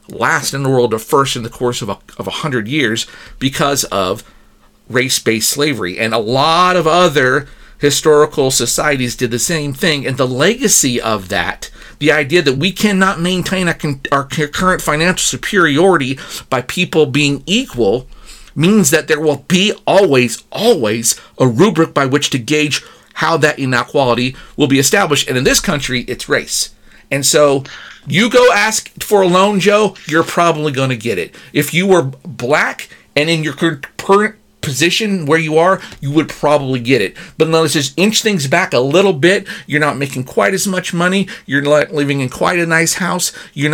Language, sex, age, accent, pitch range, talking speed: English, male, 50-69, American, 140-180 Hz, 180 wpm